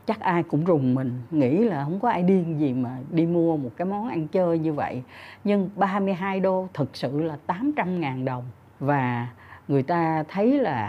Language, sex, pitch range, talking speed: Vietnamese, female, 135-200 Hz, 200 wpm